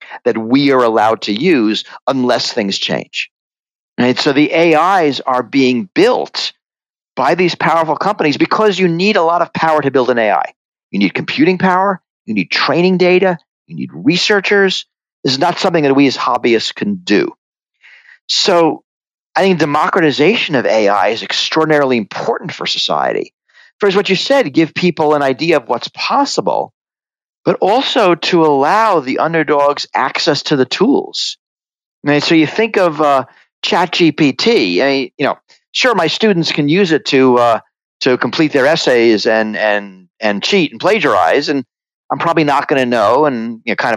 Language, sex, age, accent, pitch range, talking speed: English, male, 50-69, American, 125-180 Hz, 170 wpm